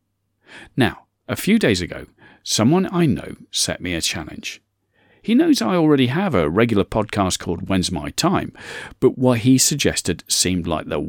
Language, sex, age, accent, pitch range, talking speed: English, male, 40-59, British, 90-130 Hz, 170 wpm